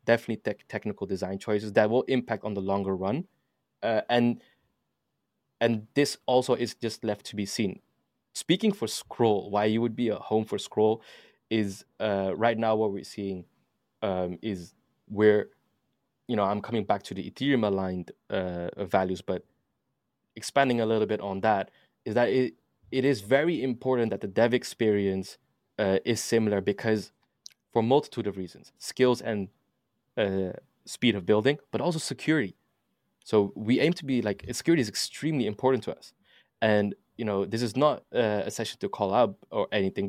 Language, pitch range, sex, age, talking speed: English, 100-125 Hz, male, 20-39, 175 wpm